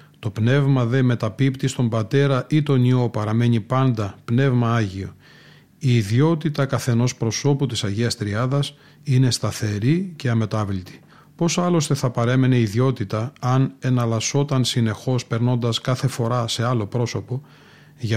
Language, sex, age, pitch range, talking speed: Greek, male, 30-49, 120-140 Hz, 130 wpm